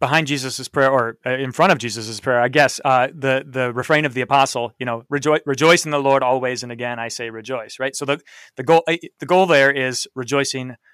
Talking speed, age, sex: 225 wpm, 30-49, male